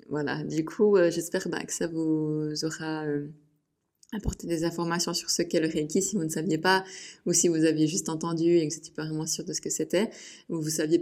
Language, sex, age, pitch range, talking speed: French, female, 20-39, 155-175 Hz, 230 wpm